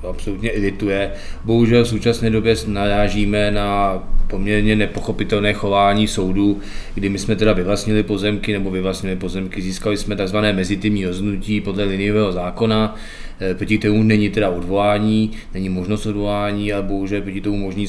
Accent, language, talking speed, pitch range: native, Czech, 145 wpm, 100-110 Hz